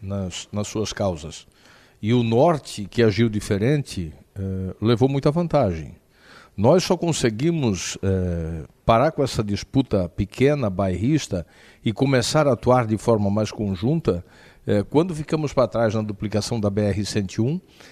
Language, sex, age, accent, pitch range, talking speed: Portuguese, male, 50-69, Brazilian, 105-145 Hz, 145 wpm